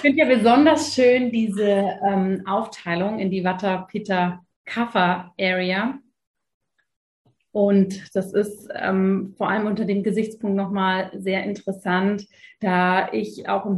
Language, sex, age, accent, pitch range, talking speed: German, female, 30-49, German, 195-235 Hz, 130 wpm